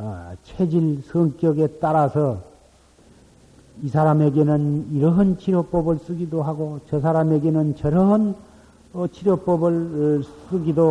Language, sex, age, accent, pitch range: Korean, male, 50-69, native, 125-180 Hz